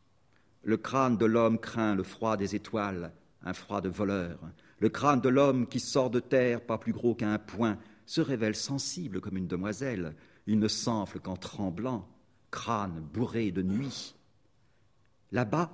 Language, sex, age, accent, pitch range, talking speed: German, male, 50-69, French, 100-135 Hz, 160 wpm